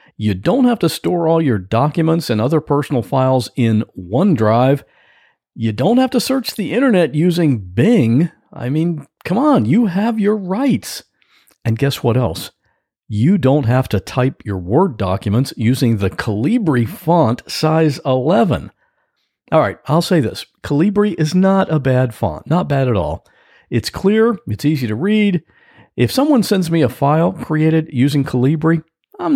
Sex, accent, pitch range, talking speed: male, American, 115-190 Hz, 165 wpm